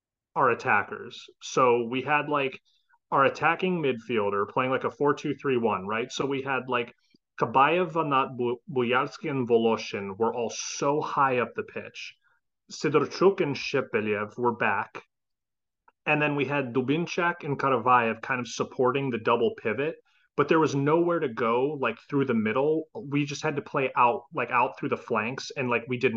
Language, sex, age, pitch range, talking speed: English, male, 30-49, 125-150 Hz, 165 wpm